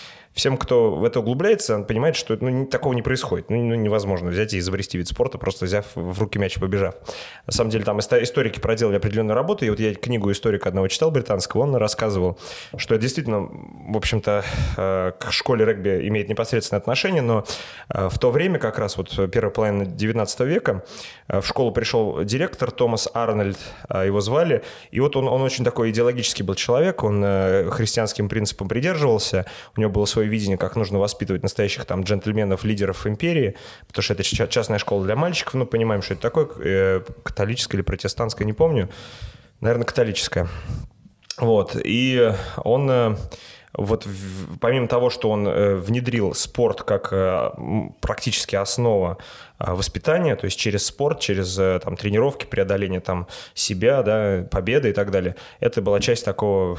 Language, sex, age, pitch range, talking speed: Russian, male, 20-39, 95-115 Hz, 160 wpm